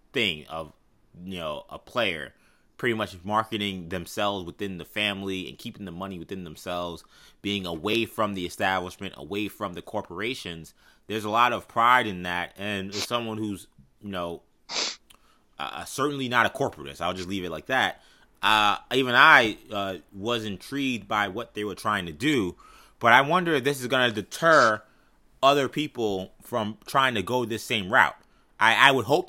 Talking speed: 180 wpm